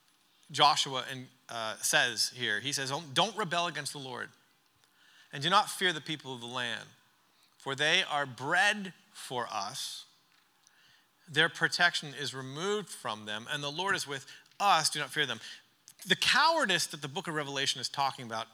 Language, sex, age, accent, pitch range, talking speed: English, male, 40-59, American, 125-165 Hz, 170 wpm